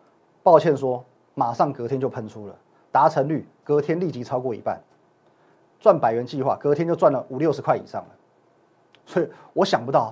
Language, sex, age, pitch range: Chinese, male, 30-49, 125-175 Hz